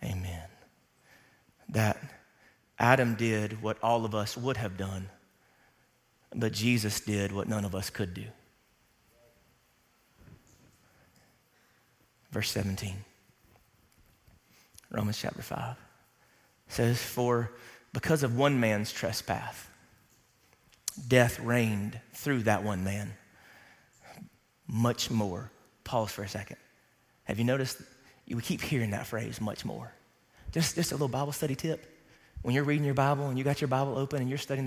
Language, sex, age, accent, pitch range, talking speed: English, male, 30-49, American, 105-145 Hz, 130 wpm